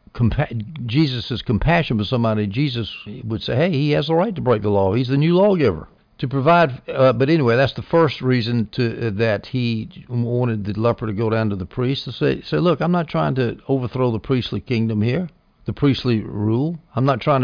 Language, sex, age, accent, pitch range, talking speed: English, male, 60-79, American, 110-140 Hz, 210 wpm